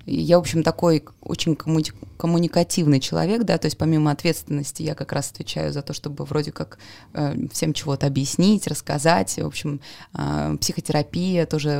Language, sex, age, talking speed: Russian, female, 20-39, 150 wpm